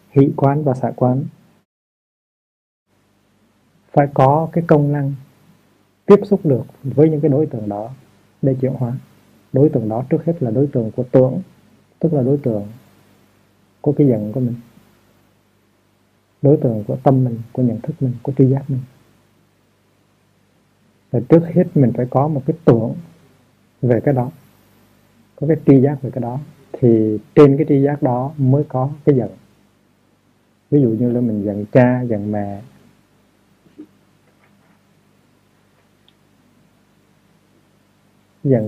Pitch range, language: 115-145 Hz, Vietnamese